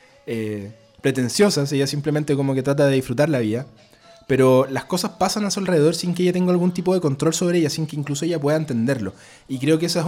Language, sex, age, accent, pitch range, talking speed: Spanish, male, 20-39, Argentinian, 120-155 Hz, 230 wpm